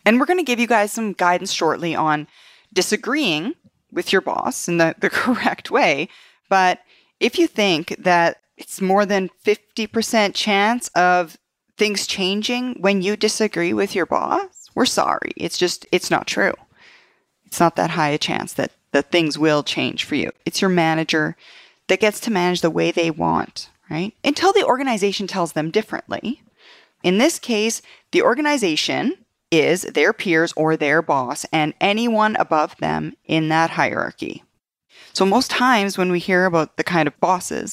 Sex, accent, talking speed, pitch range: female, American, 170 wpm, 170-225 Hz